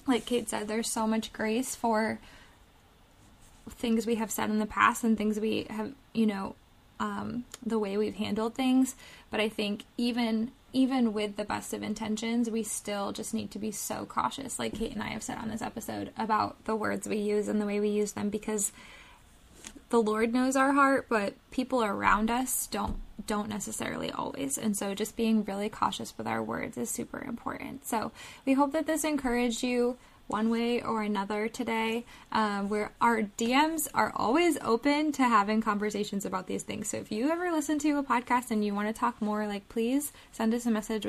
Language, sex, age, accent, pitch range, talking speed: English, female, 20-39, American, 210-245 Hz, 200 wpm